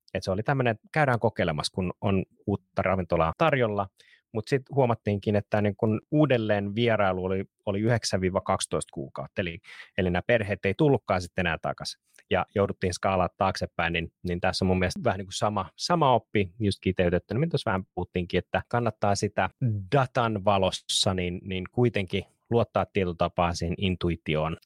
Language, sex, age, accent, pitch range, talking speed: Finnish, male, 30-49, native, 90-115 Hz, 155 wpm